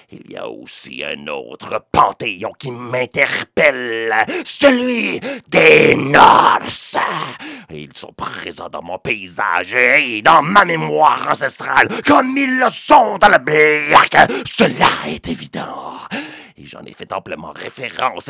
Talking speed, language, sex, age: 130 wpm, English, male, 50-69